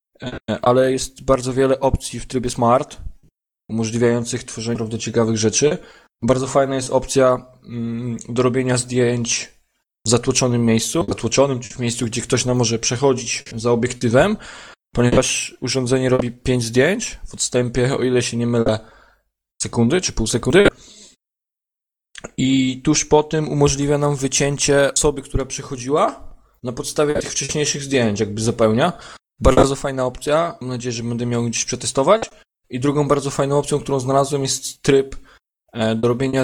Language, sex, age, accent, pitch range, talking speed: Polish, male, 20-39, native, 115-135 Hz, 145 wpm